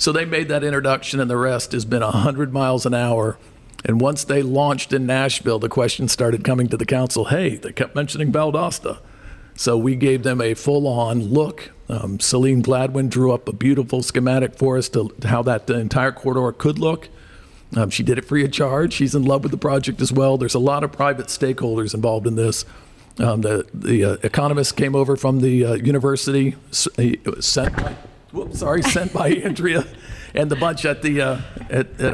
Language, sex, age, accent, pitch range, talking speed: English, male, 50-69, American, 115-135 Hz, 210 wpm